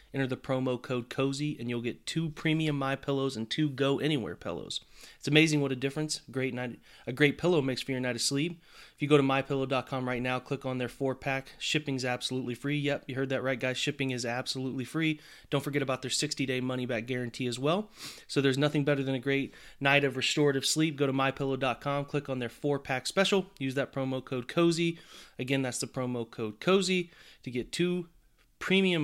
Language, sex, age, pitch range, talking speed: English, male, 30-49, 125-145 Hz, 215 wpm